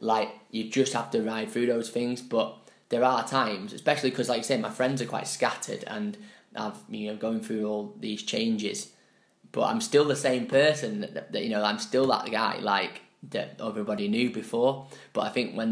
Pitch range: 110-140 Hz